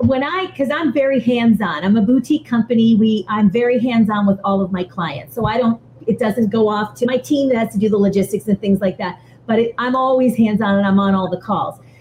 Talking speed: 250 wpm